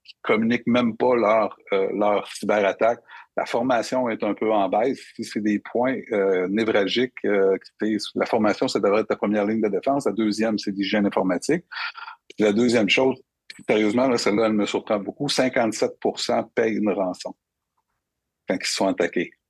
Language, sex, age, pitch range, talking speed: French, male, 60-79, 105-125 Hz, 170 wpm